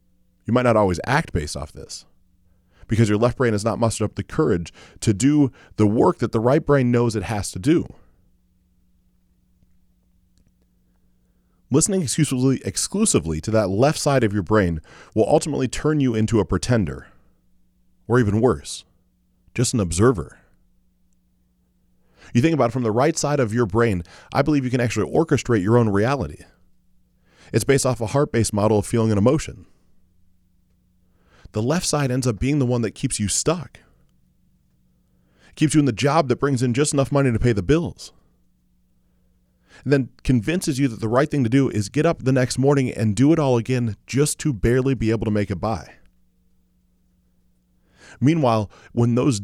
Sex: male